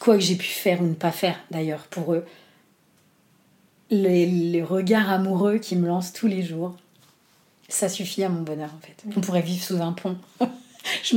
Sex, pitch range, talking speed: female, 150-185 Hz, 195 wpm